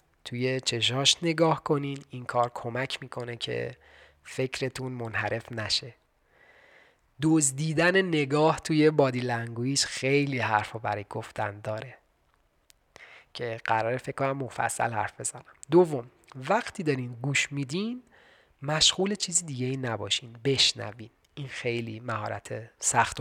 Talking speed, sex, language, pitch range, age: 110 wpm, male, Persian, 115-160 Hz, 30-49